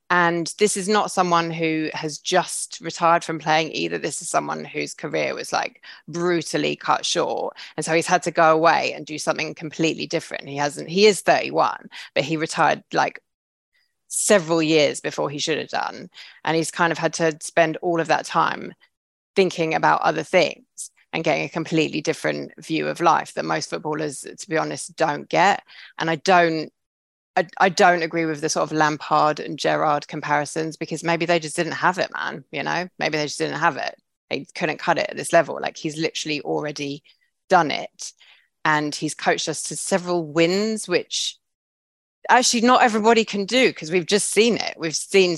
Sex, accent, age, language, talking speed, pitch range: female, British, 20-39, English, 190 wpm, 155-175 Hz